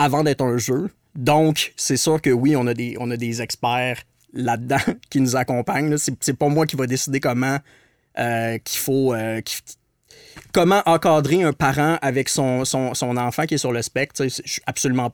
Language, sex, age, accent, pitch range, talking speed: French, male, 30-49, Canadian, 120-140 Hz, 205 wpm